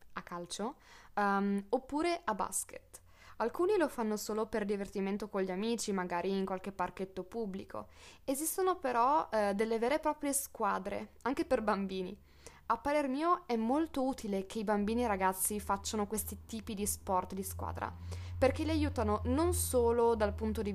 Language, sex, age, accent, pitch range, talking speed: Italian, female, 20-39, native, 195-265 Hz, 165 wpm